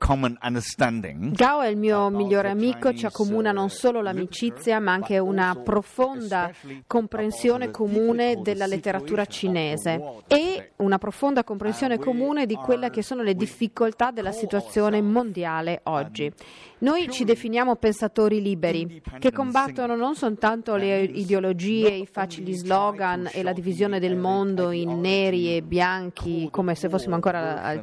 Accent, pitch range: native, 185-235 Hz